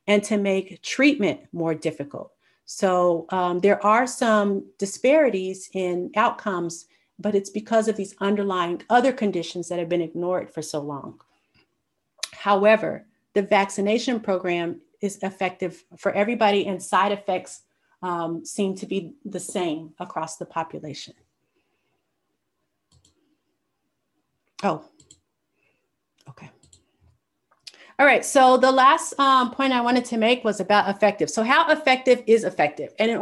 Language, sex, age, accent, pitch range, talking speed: English, female, 40-59, American, 180-220 Hz, 130 wpm